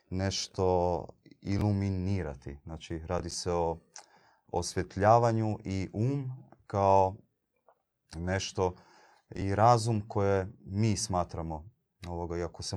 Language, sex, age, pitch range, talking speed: Croatian, male, 30-49, 85-95 Hz, 90 wpm